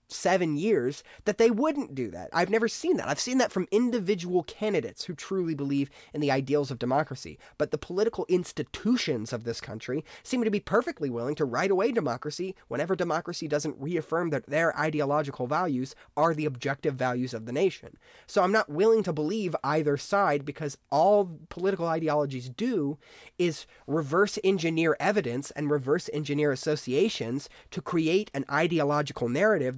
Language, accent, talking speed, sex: English, American, 165 wpm, male